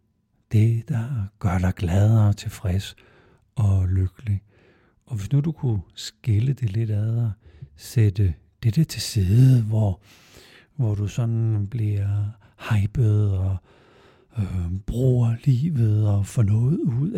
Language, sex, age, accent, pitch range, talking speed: Danish, male, 60-79, native, 100-120 Hz, 130 wpm